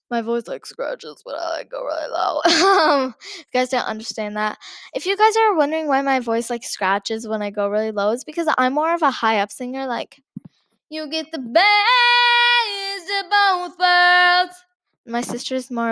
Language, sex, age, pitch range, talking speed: English, female, 10-29, 235-370 Hz, 190 wpm